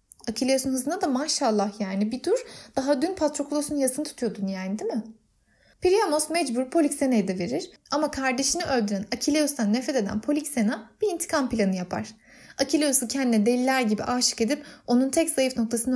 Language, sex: Turkish, female